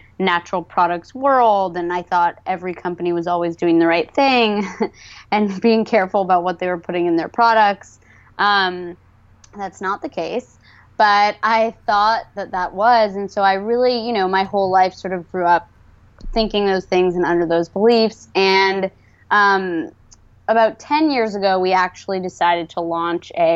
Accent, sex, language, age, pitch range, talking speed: American, female, English, 20-39, 175-205 Hz, 175 wpm